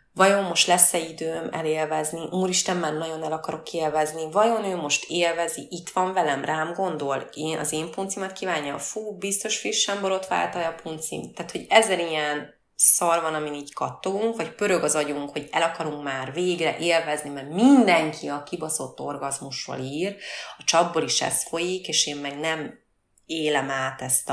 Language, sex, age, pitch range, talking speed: Hungarian, female, 30-49, 150-195 Hz, 170 wpm